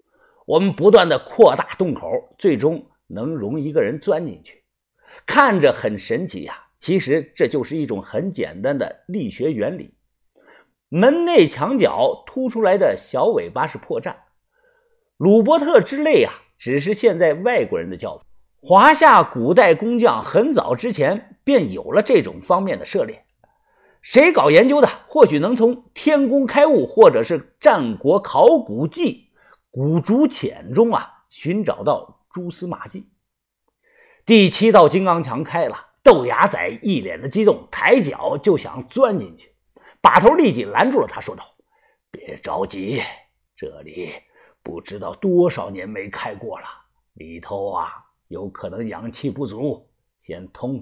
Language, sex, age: Chinese, male, 50-69